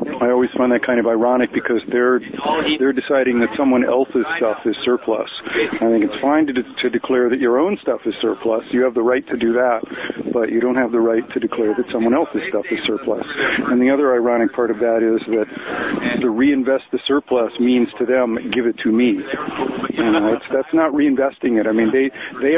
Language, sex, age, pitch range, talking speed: English, male, 50-69, 120-150 Hz, 220 wpm